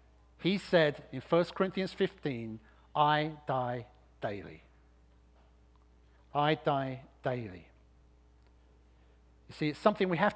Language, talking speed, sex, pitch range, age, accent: English, 105 wpm, male, 115-180 Hz, 50-69, British